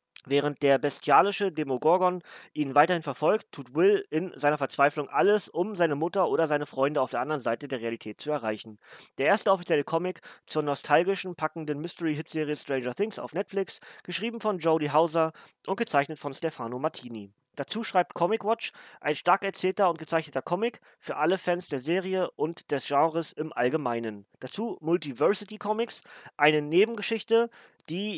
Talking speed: 160 wpm